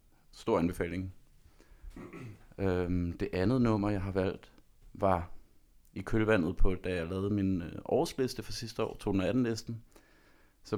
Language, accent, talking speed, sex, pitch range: Danish, native, 130 wpm, male, 85-105 Hz